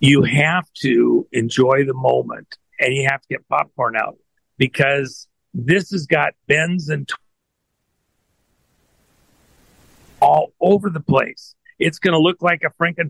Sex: male